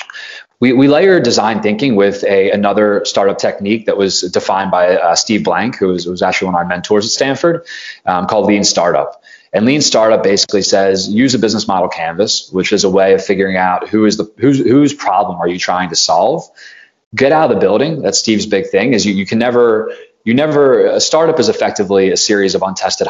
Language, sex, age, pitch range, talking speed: English, male, 20-39, 95-125 Hz, 215 wpm